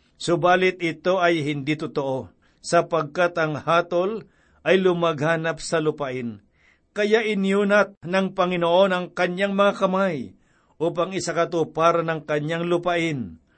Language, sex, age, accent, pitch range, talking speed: Filipino, male, 50-69, native, 155-190 Hz, 110 wpm